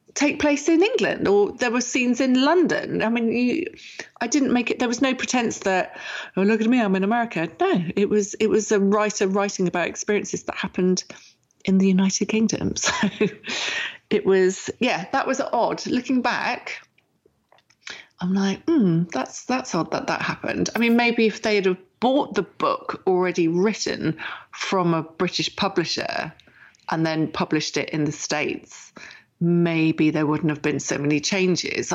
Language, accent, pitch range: English, British, 180-225 Hz